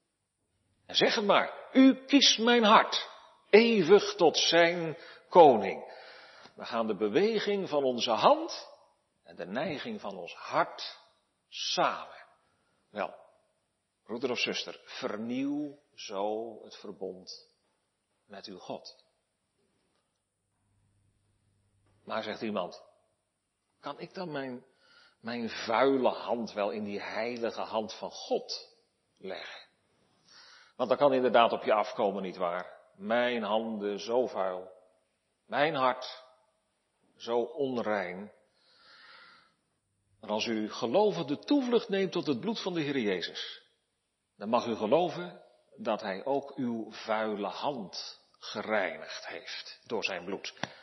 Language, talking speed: Dutch, 120 wpm